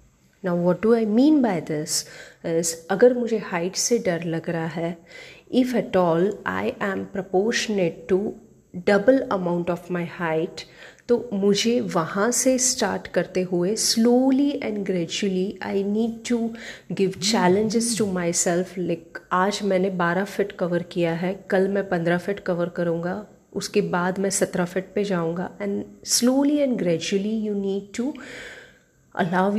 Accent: native